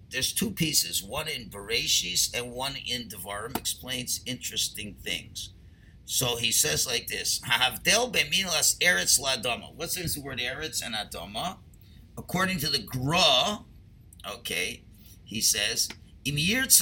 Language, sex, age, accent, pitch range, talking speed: English, male, 50-69, American, 115-175 Hz, 130 wpm